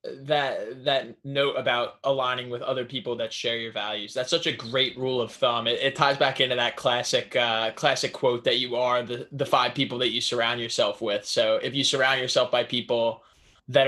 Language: English